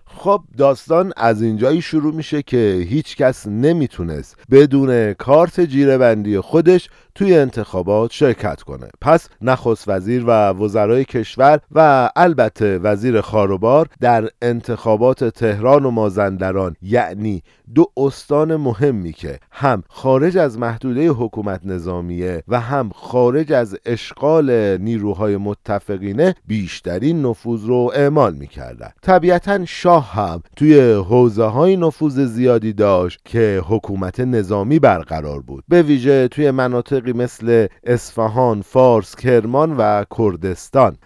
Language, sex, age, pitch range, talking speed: Persian, male, 50-69, 105-145 Hz, 115 wpm